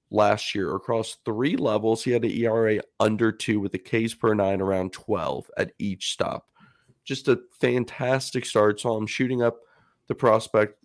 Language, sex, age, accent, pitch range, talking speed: English, male, 40-59, American, 105-140 Hz, 170 wpm